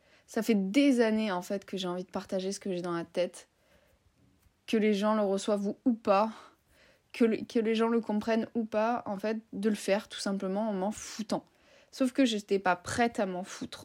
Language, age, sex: French, 20-39, female